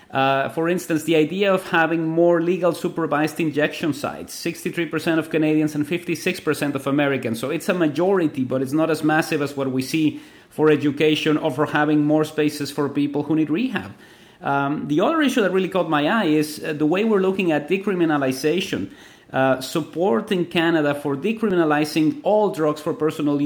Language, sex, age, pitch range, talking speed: English, male, 30-49, 150-185 Hz, 175 wpm